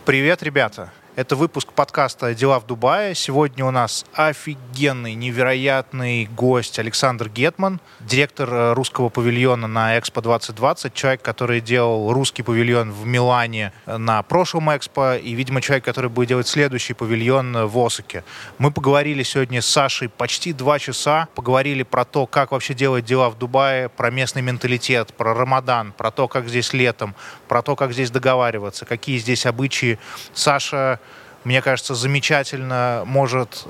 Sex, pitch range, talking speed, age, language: male, 120-140 Hz, 145 wpm, 20-39, Russian